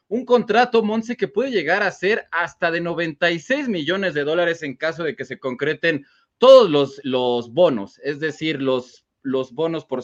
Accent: Mexican